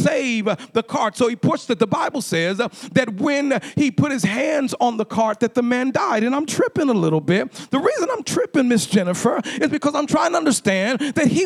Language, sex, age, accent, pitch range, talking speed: English, male, 40-59, American, 245-310 Hz, 225 wpm